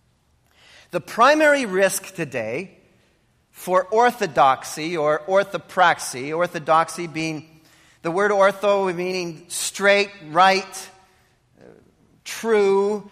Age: 40-59